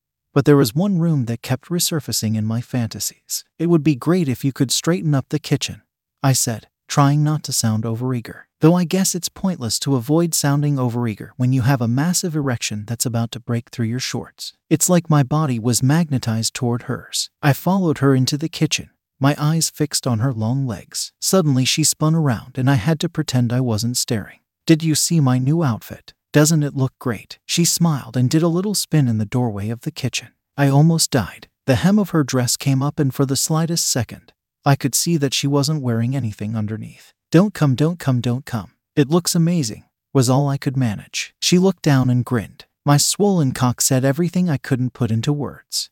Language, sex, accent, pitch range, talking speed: English, male, American, 125-155 Hz, 210 wpm